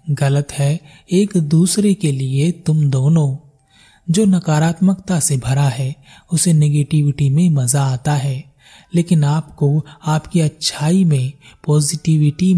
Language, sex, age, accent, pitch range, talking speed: Hindi, male, 30-49, native, 140-170 Hz, 120 wpm